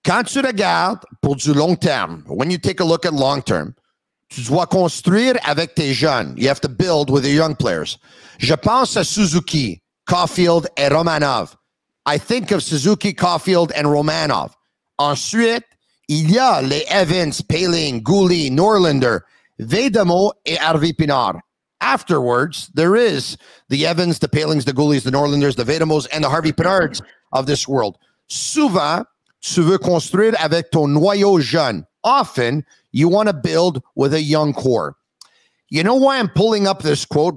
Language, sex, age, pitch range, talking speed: English, male, 50-69, 140-180 Hz, 160 wpm